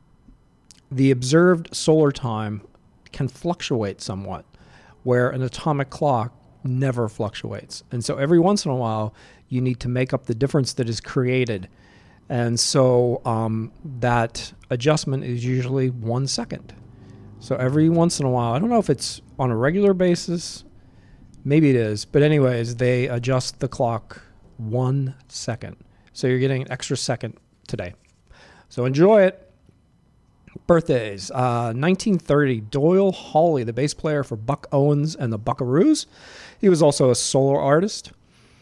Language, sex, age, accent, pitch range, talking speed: English, male, 40-59, American, 115-145 Hz, 150 wpm